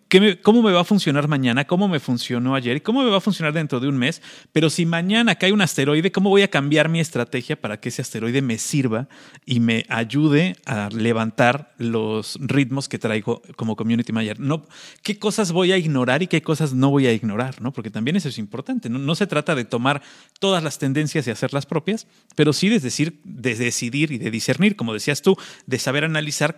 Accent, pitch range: Mexican, 125-160 Hz